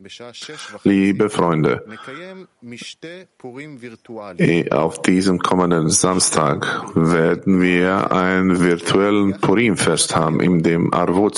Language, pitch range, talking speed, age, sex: German, 90-110 Hz, 80 wpm, 50-69, male